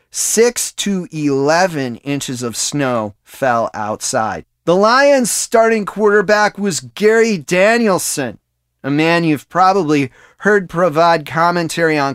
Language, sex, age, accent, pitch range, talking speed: English, male, 30-49, American, 130-180 Hz, 115 wpm